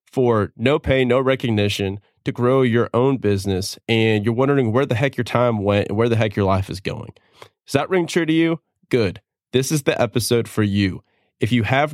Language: English